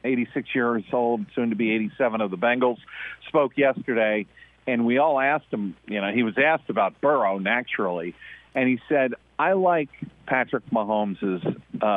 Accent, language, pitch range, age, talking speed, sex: American, English, 110-145 Hz, 50-69, 160 wpm, male